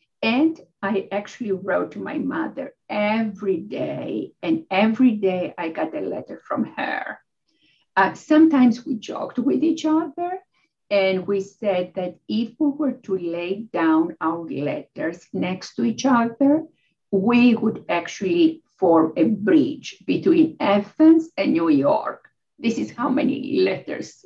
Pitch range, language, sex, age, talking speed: 195-295 Hz, English, female, 50-69, 140 wpm